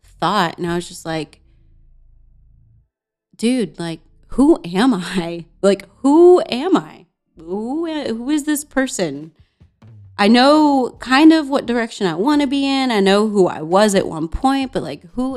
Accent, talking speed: American, 165 wpm